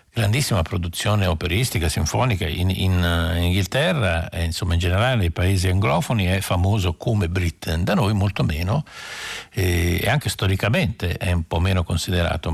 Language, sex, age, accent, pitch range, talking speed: Italian, male, 60-79, native, 85-110 Hz, 155 wpm